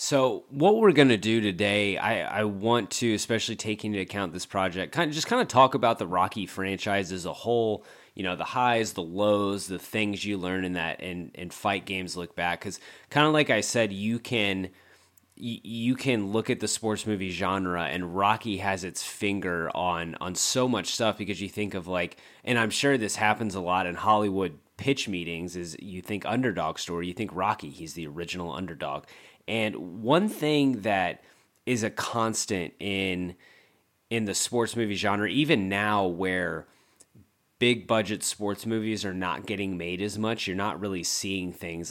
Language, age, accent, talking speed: English, 30-49, American, 190 wpm